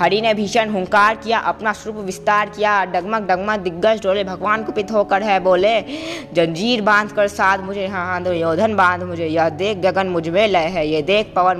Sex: female